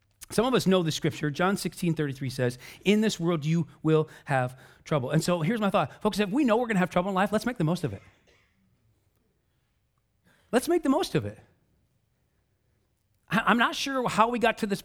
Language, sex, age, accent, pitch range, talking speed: English, male, 40-59, American, 125-185 Hz, 205 wpm